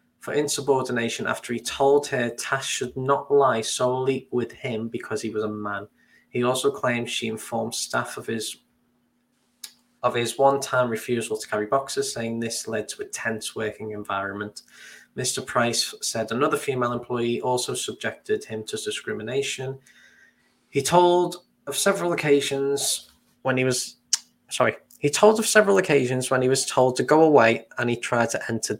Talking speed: 165 wpm